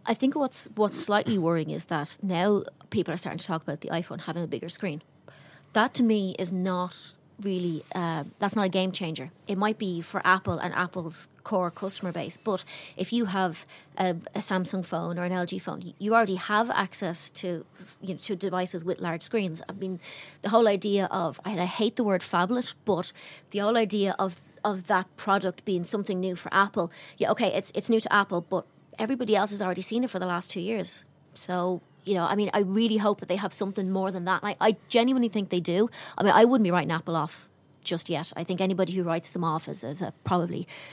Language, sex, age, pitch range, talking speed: English, female, 30-49, 170-200 Hz, 225 wpm